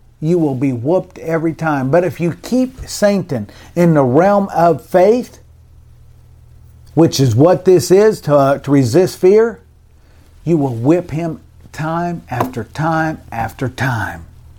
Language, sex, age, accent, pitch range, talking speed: English, male, 50-69, American, 125-185 Hz, 145 wpm